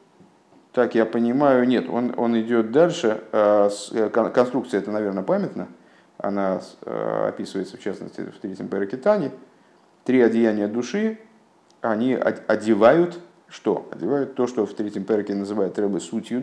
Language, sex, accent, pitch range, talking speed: Russian, male, native, 100-125 Hz, 140 wpm